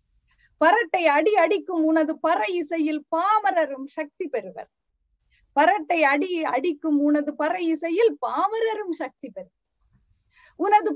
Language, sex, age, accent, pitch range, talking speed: Tamil, female, 30-49, native, 290-385 Hz, 105 wpm